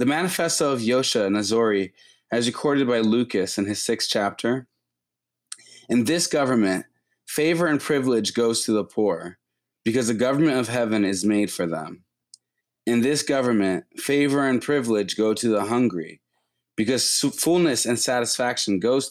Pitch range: 100-130 Hz